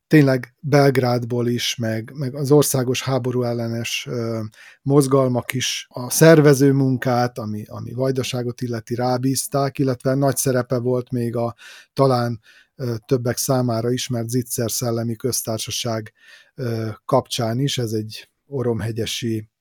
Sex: male